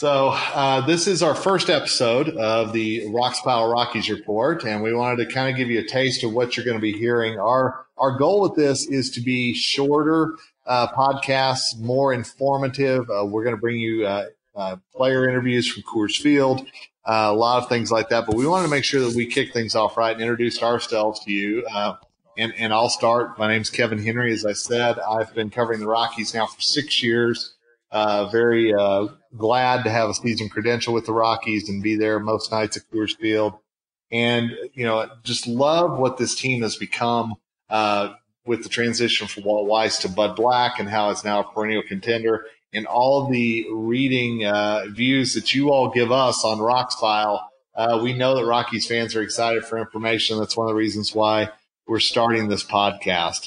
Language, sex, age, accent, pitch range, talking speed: English, male, 40-59, American, 110-125 Hz, 205 wpm